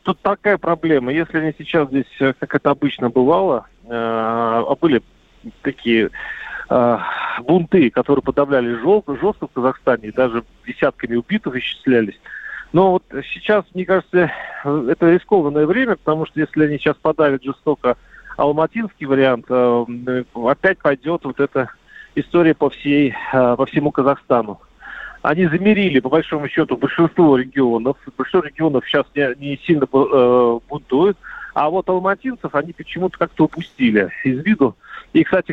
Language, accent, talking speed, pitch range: Russian, native, 130 wpm, 130-165 Hz